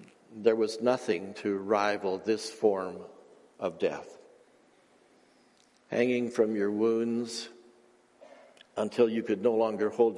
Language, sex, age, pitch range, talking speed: English, male, 60-79, 115-145 Hz, 110 wpm